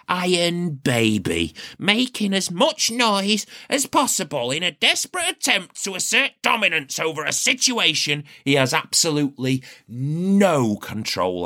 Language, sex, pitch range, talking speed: English, male, 105-160 Hz, 120 wpm